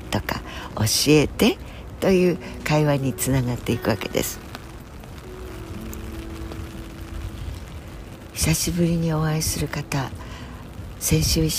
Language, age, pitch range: Japanese, 60-79, 85-140 Hz